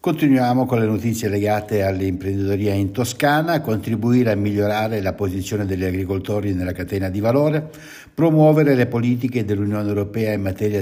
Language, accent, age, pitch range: Italian, native, 60-79, 100-135 Hz